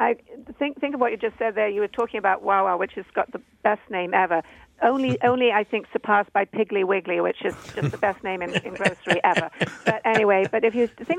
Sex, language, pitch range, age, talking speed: female, English, 180-215 Hz, 50-69, 240 wpm